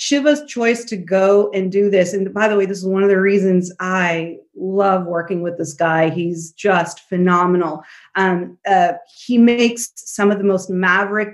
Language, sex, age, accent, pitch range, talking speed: English, female, 40-59, American, 180-225 Hz, 185 wpm